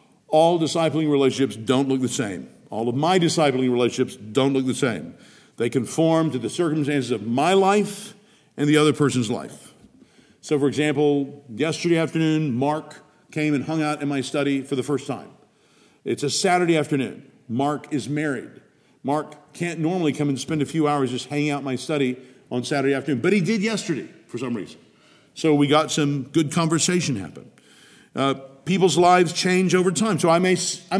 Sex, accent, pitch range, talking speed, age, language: male, American, 135-180 Hz, 180 wpm, 50-69, English